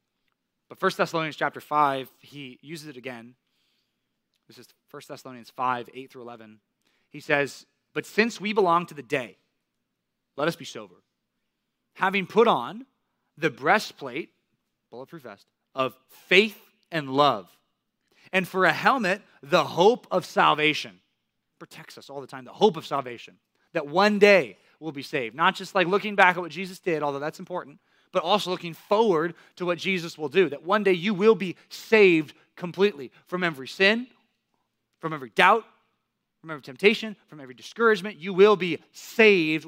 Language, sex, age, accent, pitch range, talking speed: English, male, 20-39, American, 140-195 Hz, 165 wpm